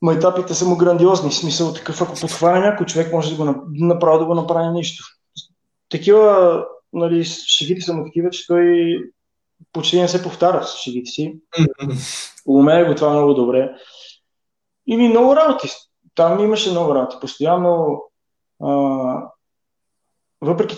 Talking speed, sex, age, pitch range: 155 wpm, male, 20-39, 140-175 Hz